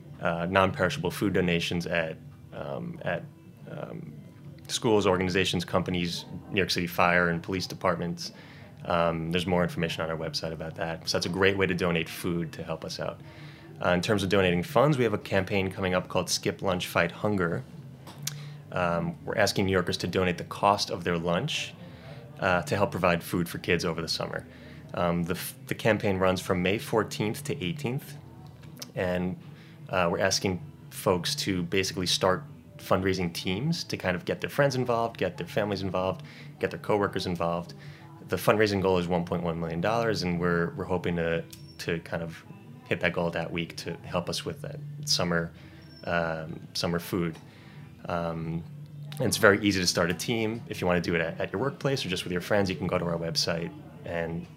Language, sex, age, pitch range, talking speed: English, male, 20-39, 85-115 Hz, 190 wpm